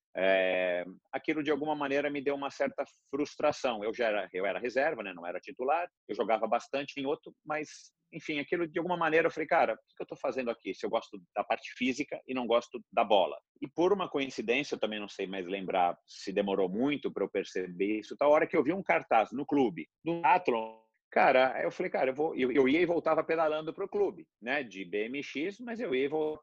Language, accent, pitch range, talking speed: Portuguese, Brazilian, 110-150 Hz, 230 wpm